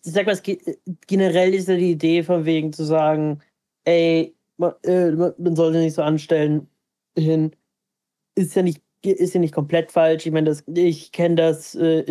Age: 20-39